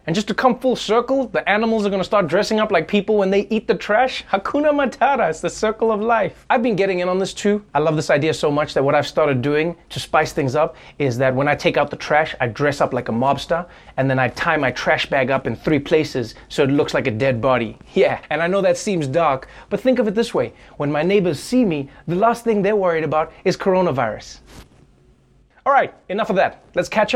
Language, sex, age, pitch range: English, male, 20-39, 145-215 Hz